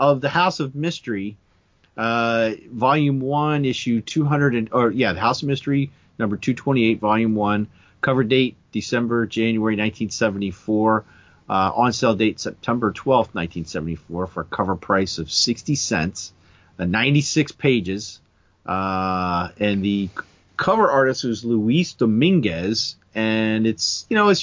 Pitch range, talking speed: 90-125 Hz, 135 wpm